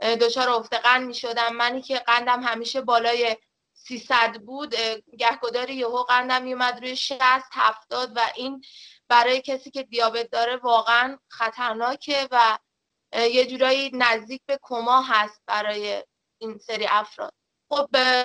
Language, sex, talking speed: Persian, female, 135 wpm